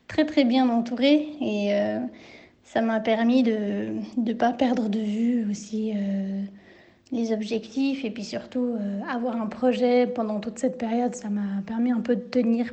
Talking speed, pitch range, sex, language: 175 wpm, 210-250 Hz, female, French